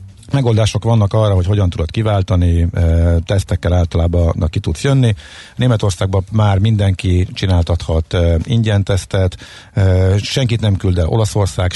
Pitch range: 95-115 Hz